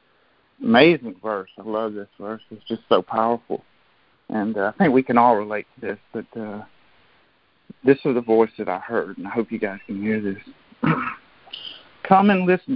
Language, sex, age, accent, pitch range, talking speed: English, male, 50-69, American, 105-135 Hz, 190 wpm